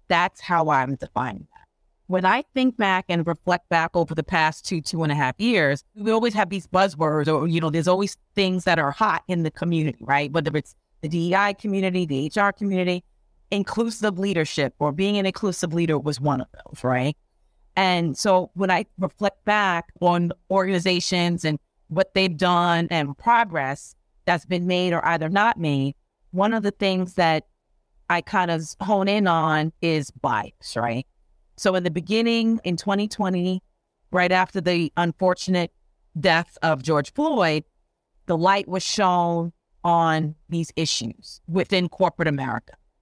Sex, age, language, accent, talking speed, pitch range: female, 30-49, English, American, 165 wpm, 155-195 Hz